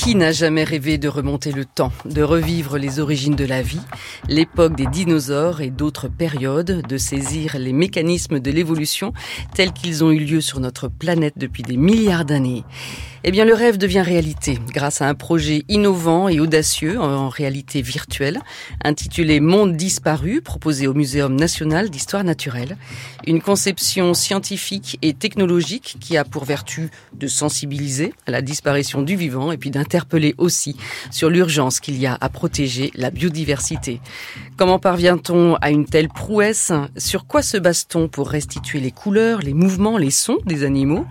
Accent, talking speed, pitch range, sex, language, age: French, 165 wpm, 140-175 Hz, female, French, 40-59